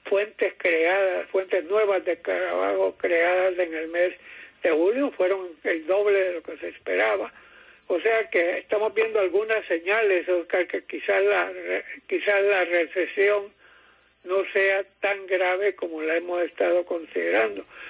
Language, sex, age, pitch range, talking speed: English, male, 60-79, 175-215 Hz, 145 wpm